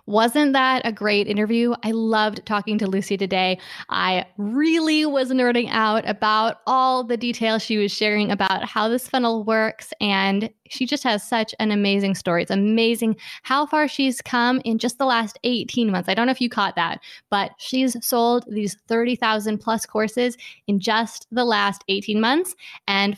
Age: 20-39